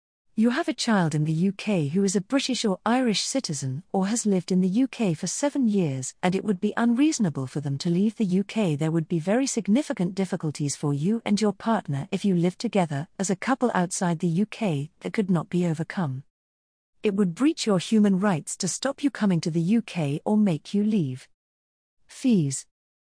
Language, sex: English, female